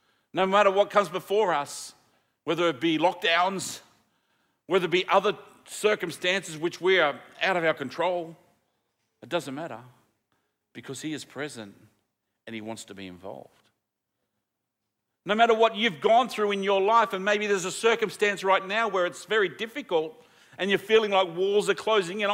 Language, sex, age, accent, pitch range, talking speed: English, male, 50-69, Australian, 135-205 Hz, 170 wpm